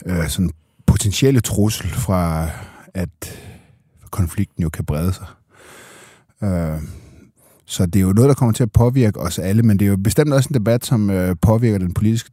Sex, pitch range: male, 90-110 Hz